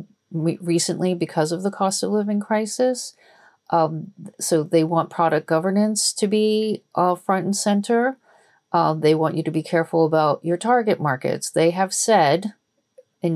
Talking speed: 155 wpm